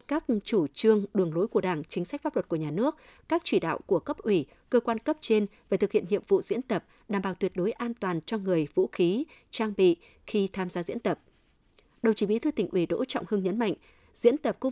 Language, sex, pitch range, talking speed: Vietnamese, female, 190-240 Hz, 255 wpm